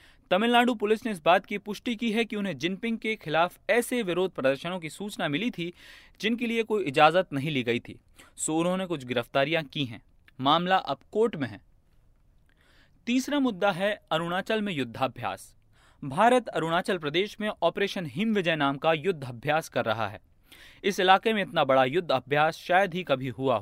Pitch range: 140-205 Hz